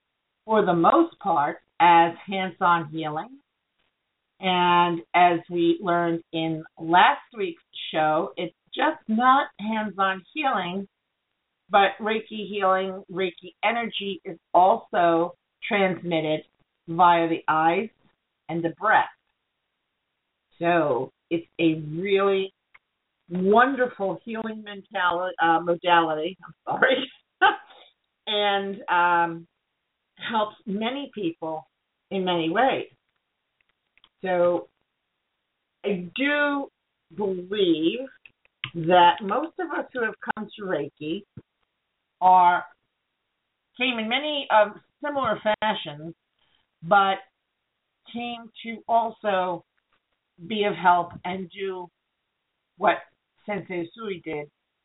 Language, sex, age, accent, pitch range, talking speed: English, female, 50-69, American, 170-215 Hz, 95 wpm